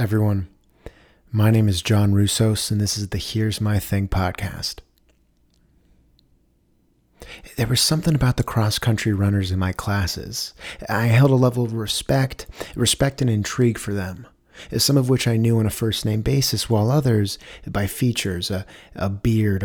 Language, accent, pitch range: English, American, 100-115 Hz